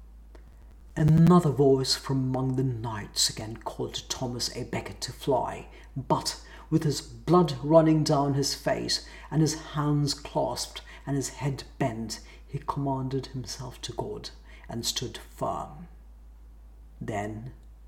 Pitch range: 105-145 Hz